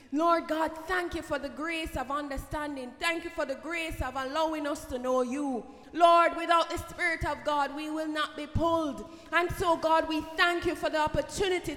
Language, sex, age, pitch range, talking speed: English, female, 20-39, 260-330 Hz, 205 wpm